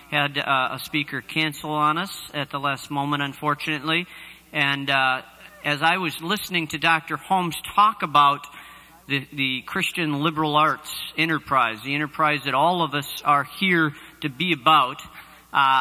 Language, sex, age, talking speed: English, male, 50-69, 155 wpm